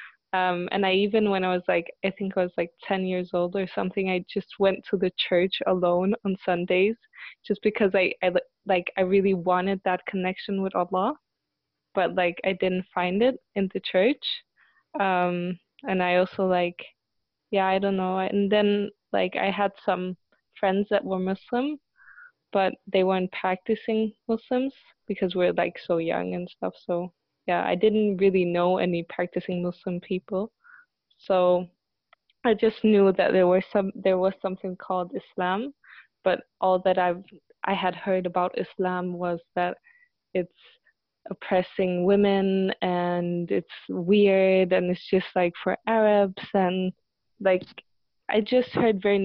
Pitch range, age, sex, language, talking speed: 180-200 Hz, 20-39, female, English, 160 wpm